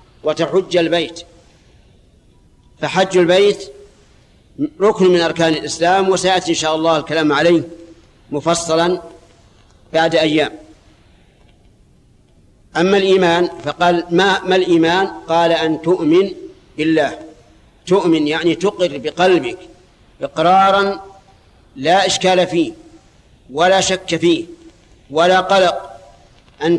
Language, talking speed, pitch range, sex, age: Arabic, 90 wpm, 160-185 Hz, male, 50-69